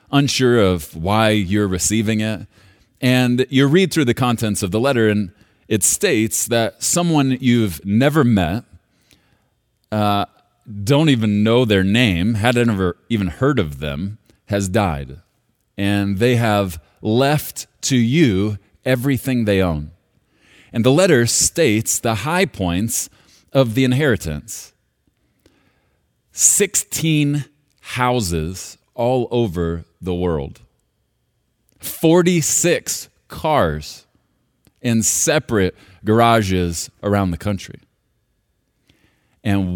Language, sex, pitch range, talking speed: English, male, 90-125 Hz, 110 wpm